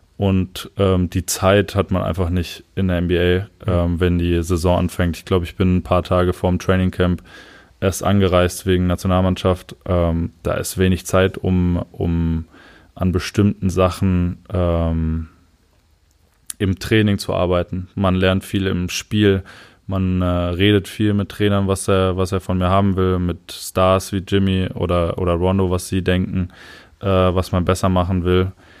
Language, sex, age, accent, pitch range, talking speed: German, male, 20-39, German, 90-100 Hz, 165 wpm